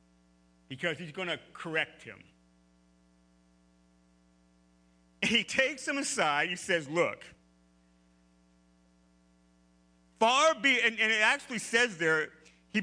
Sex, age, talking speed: male, 40-59, 105 wpm